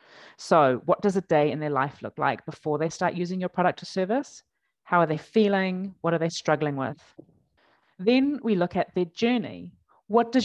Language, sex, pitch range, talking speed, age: English, female, 155-200 Hz, 200 wpm, 30-49